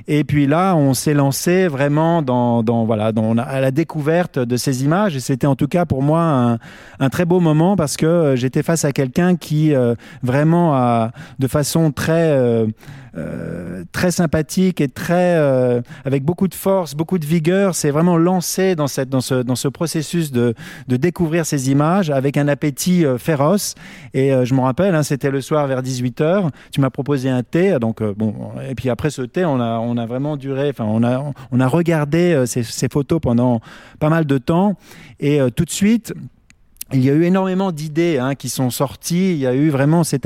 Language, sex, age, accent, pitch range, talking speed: French, male, 30-49, French, 130-170 Hz, 205 wpm